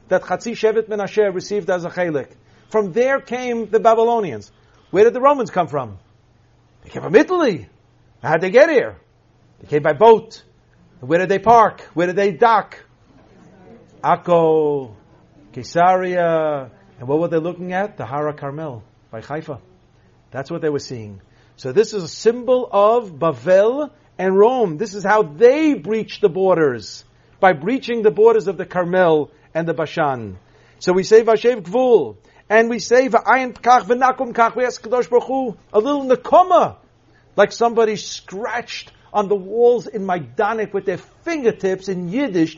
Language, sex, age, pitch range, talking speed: English, male, 50-69, 160-230 Hz, 160 wpm